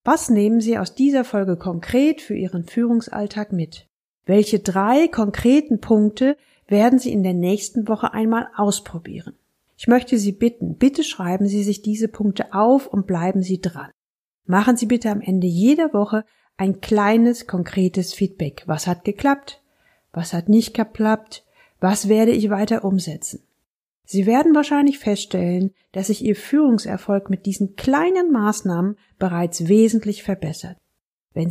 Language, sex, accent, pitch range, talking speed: German, female, German, 190-235 Hz, 145 wpm